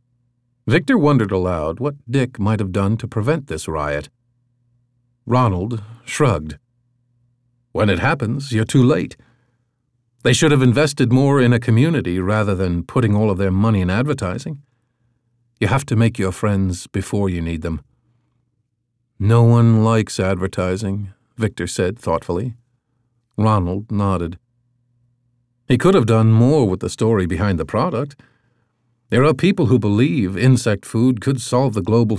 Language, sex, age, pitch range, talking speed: English, male, 50-69, 105-125 Hz, 145 wpm